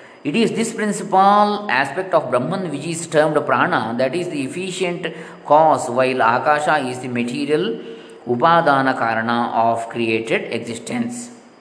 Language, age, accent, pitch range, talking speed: Kannada, 20-39, native, 130-170 Hz, 130 wpm